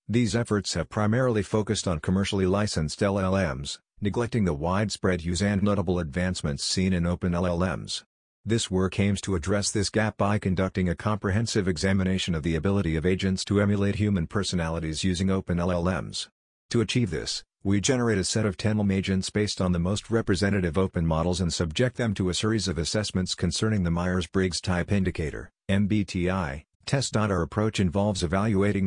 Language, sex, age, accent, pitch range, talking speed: English, male, 50-69, American, 90-105 Hz, 165 wpm